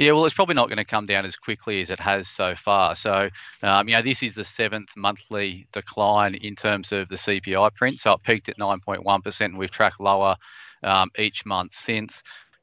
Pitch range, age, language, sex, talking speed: 95-110 Hz, 30-49, English, male, 215 wpm